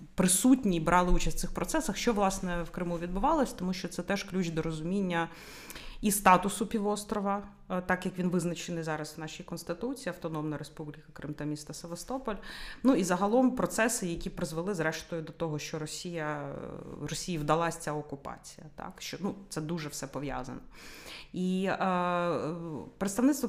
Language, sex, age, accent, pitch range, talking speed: Ukrainian, female, 30-49, native, 160-195 Hz, 155 wpm